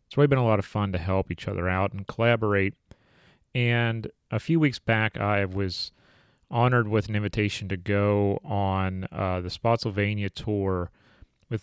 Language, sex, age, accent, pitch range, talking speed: English, male, 30-49, American, 95-115 Hz, 170 wpm